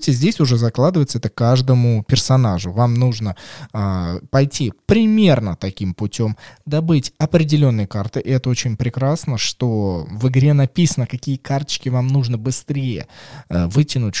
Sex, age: male, 20-39